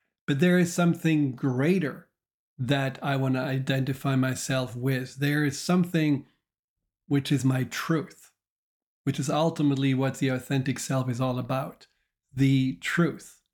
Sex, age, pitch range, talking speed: male, 40-59, 130-165 Hz, 135 wpm